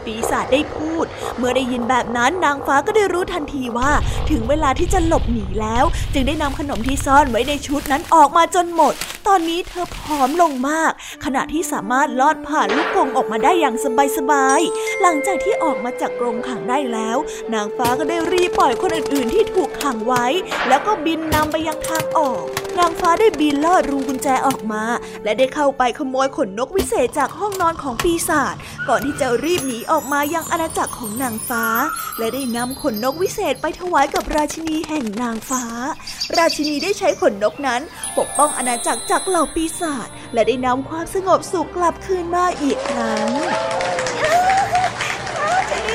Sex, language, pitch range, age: female, Thai, 265-360 Hz, 20-39